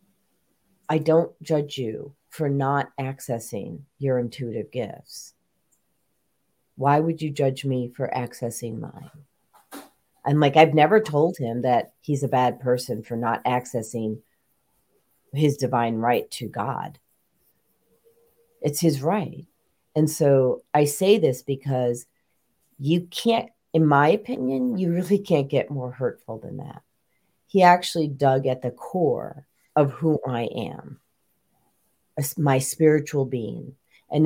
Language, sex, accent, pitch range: English, female, American, 125-155 Hz